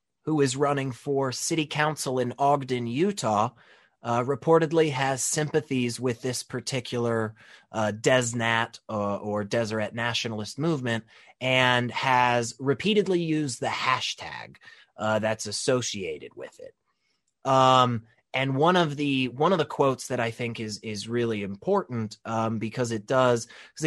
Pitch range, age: 115-145 Hz, 20-39